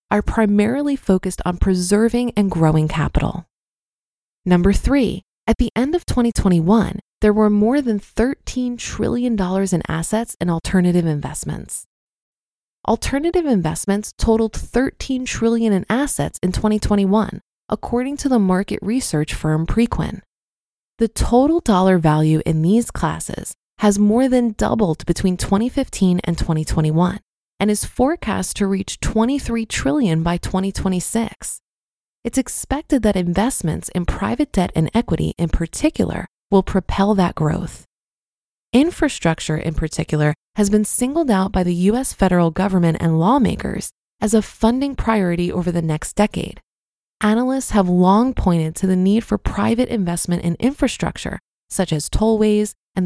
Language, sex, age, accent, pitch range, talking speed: English, female, 20-39, American, 175-235 Hz, 135 wpm